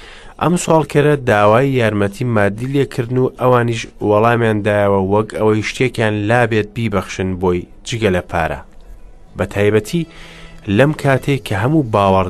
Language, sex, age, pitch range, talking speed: English, male, 30-49, 100-125 Hz, 130 wpm